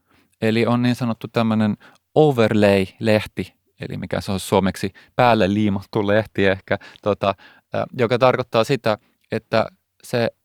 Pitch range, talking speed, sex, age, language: 95-120 Hz, 120 wpm, male, 30-49, Finnish